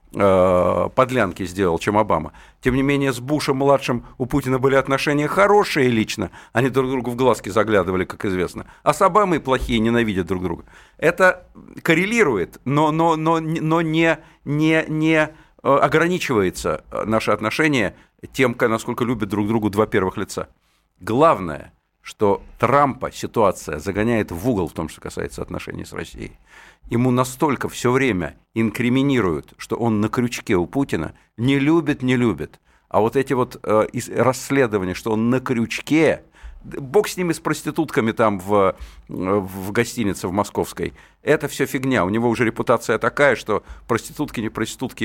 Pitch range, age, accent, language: 105-145 Hz, 50-69, native, Russian